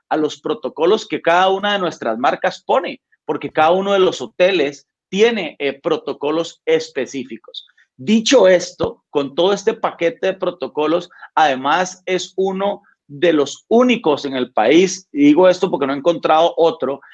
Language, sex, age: Spanish, male, 40-59